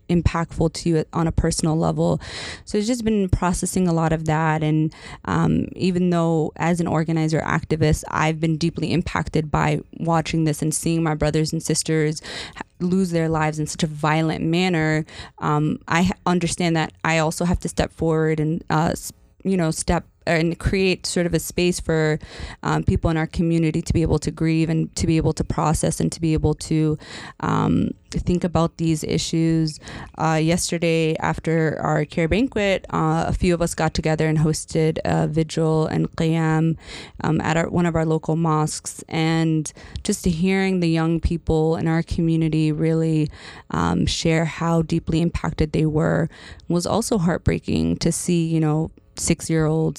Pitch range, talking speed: 155-170 Hz, 175 wpm